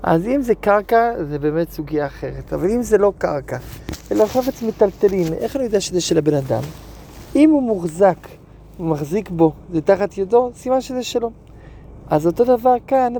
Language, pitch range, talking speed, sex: Hebrew, 170-220 Hz, 175 wpm, male